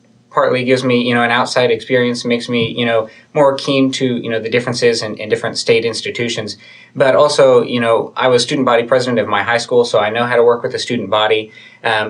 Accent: American